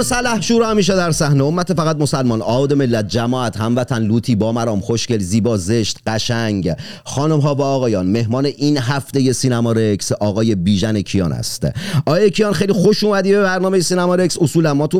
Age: 40-59